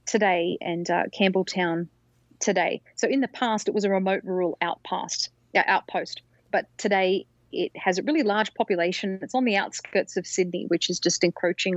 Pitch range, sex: 175-215 Hz, female